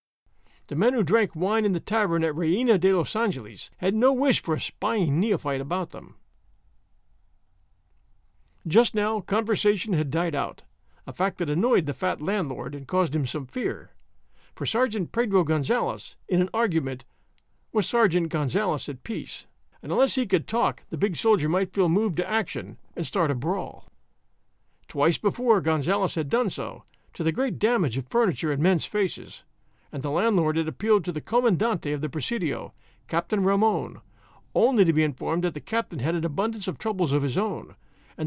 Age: 50-69